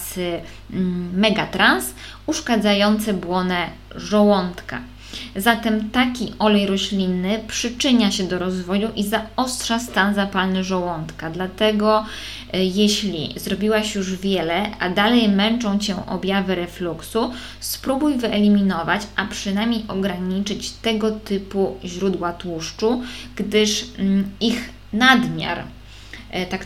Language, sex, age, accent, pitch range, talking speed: Polish, female, 20-39, native, 180-215 Hz, 90 wpm